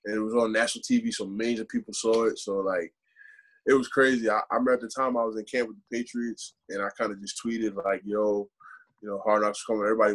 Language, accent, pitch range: English, American, 110-170 Hz